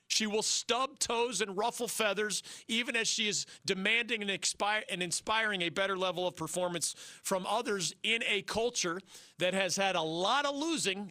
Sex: male